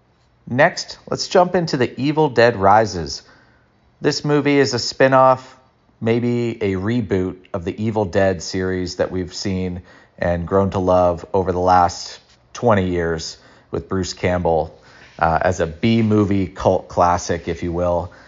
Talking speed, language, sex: 155 wpm, English, male